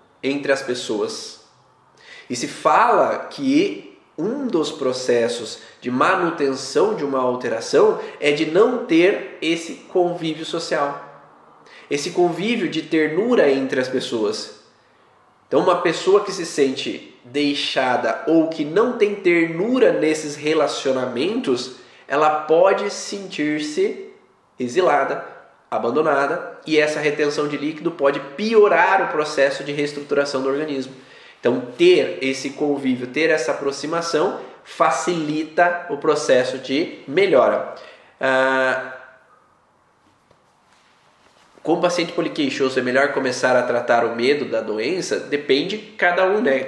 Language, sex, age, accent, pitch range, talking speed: Portuguese, male, 20-39, Brazilian, 130-180 Hz, 115 wpm